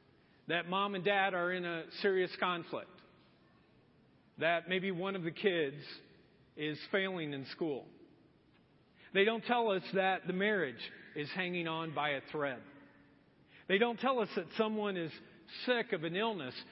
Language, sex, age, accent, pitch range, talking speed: English, male, 50-69, American, 175-245 Hz, 155 wpm